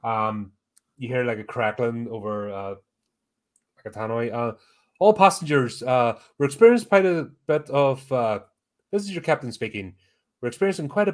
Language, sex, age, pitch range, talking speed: English, male, 30-49, 105-140 Hz, 160 wpm